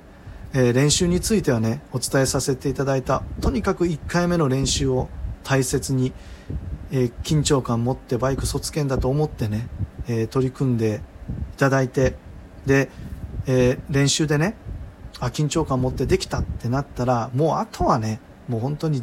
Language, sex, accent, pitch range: Japanese, male, native, 115-145 Hz